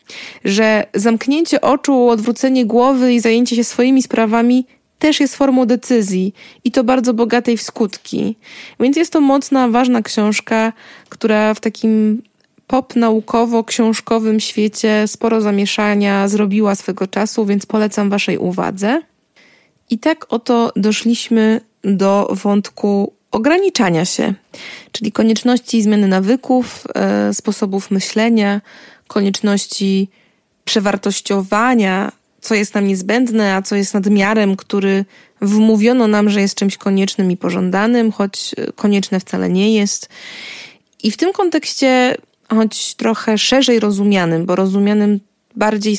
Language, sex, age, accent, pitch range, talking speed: Polish, female, 20-39, native, 200-235 Hz, 115 wpm